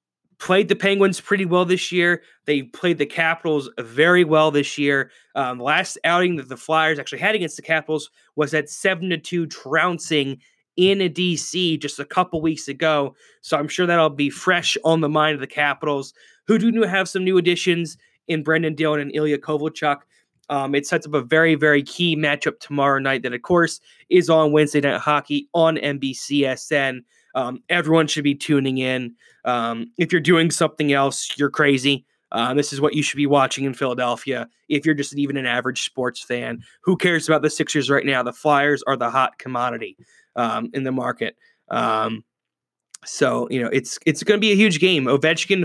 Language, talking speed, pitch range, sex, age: English, 190 wpm, 140-165 Hz, male, 20-39